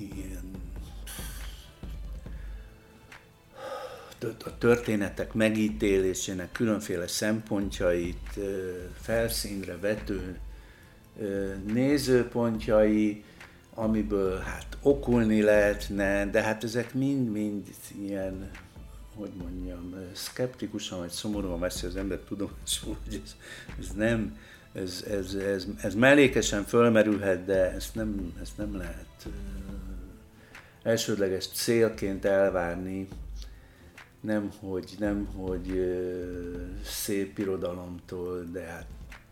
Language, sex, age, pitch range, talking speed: Hungarian, male, 60-79, 90-105 Hz, 80 wpm